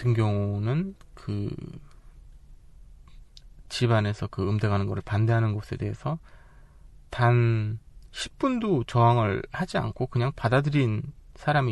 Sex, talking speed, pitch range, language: male, 95 wpm, 110-140 Hz, English